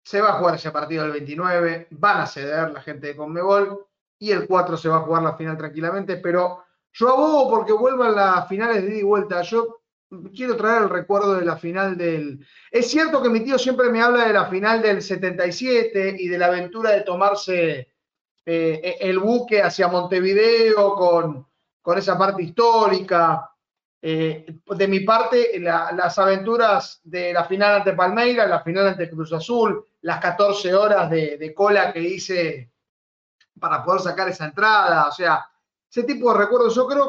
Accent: Argentinian